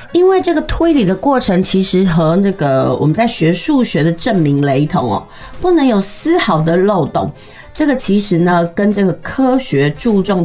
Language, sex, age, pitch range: Chinese, female, 30-49, 165-240 Hz